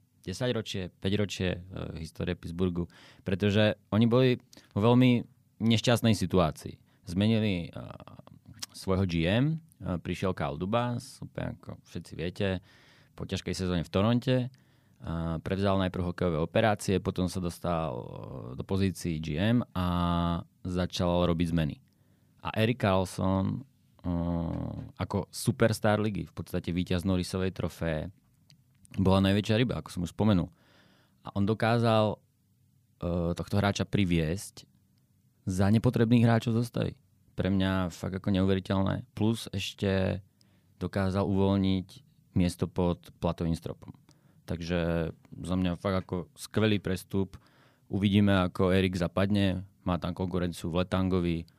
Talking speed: 120 wpm